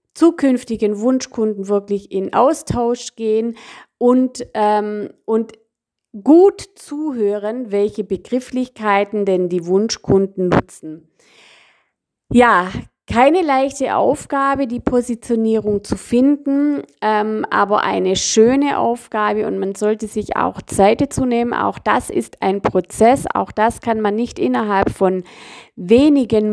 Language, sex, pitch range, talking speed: German, female, 195-245 Hz, 115 wpm